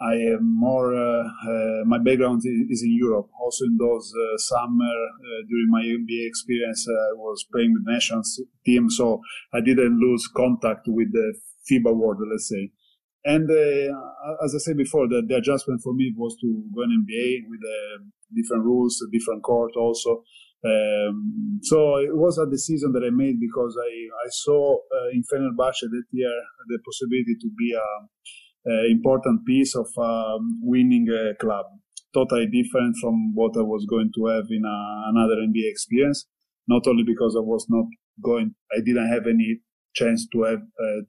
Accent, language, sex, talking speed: Italian, English, male, 185 wpm